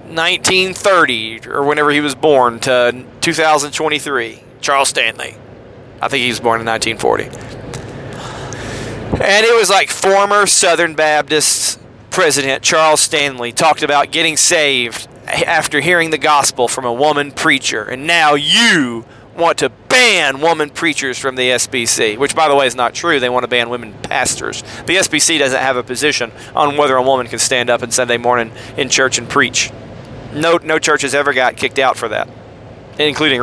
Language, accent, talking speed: English, American, 170 wpm